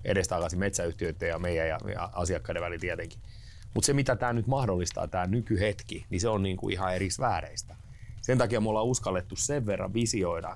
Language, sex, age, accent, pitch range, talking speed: Finnish, male, 30-49, native, 95-115 Hz, 175 wpm